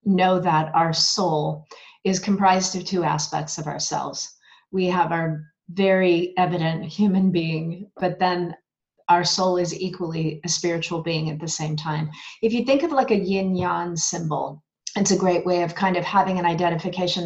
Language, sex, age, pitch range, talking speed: English, female, 30-49, 160-190 Hz, 175 wpm